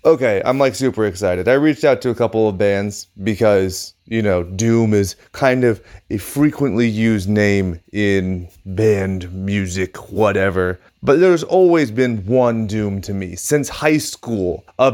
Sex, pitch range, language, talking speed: male, 100-130 Hz, English, 160 wpm